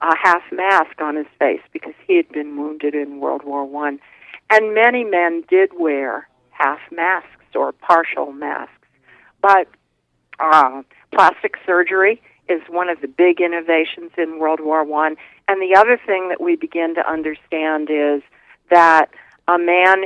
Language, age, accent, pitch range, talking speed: English, 50-69, American, 155-200 Hz, 150 wpm